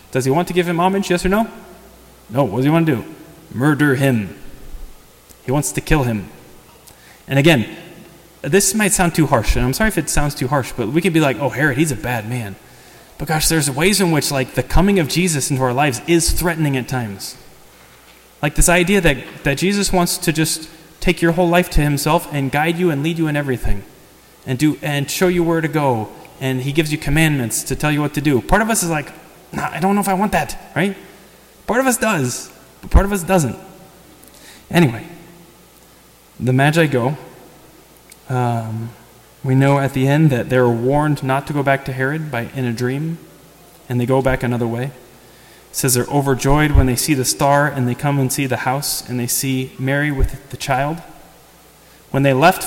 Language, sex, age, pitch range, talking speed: English, male, 20-39, 130-170 Hz, 215 wpm